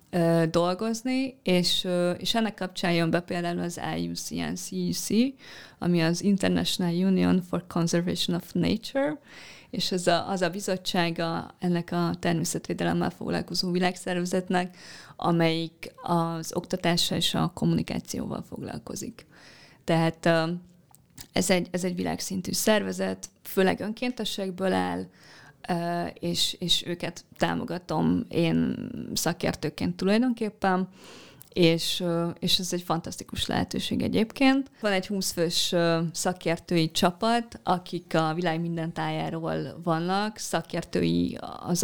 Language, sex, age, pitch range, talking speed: Hungarian, female, 20-39, 165-190 Hz, 105 wpm